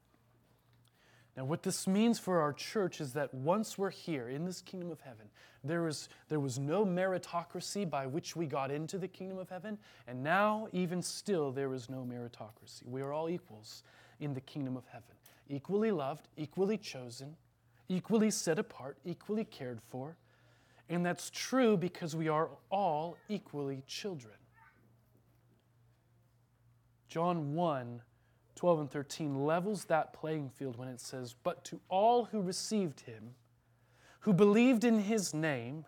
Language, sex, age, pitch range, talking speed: English, male, 30-49, 120-185 Hz, 150 wpm